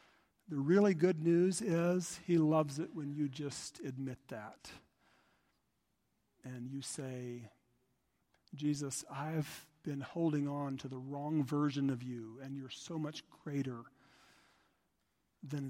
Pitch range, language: 130-155 Hz, English